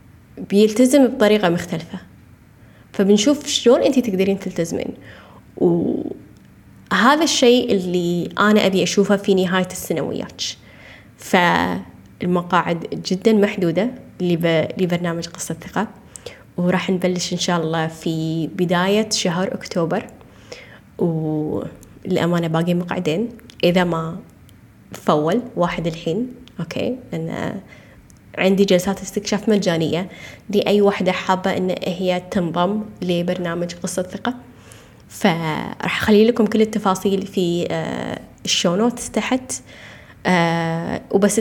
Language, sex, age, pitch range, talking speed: Arabic, female, 20-39, 175-215 Hz, 95 wpm